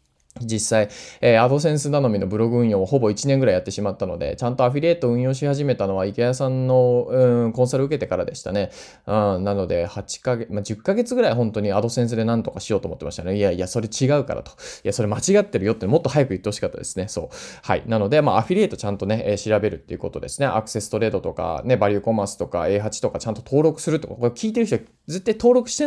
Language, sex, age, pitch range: Japanese, male, 20-39, 105-155 Hz